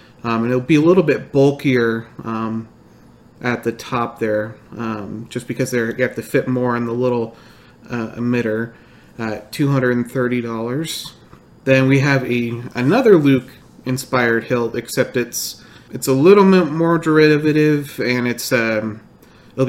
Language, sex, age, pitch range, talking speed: English, male, 30-49, 115-135 Hz, 150 wpm